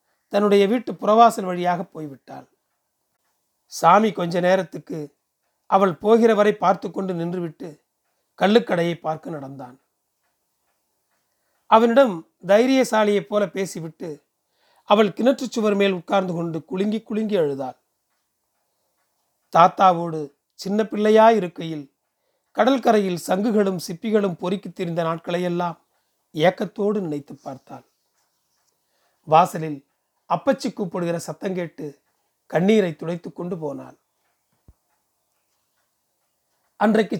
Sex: male